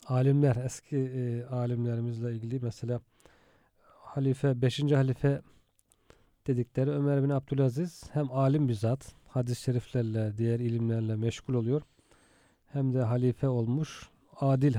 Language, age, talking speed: Turkish, 40-59, 115 wpm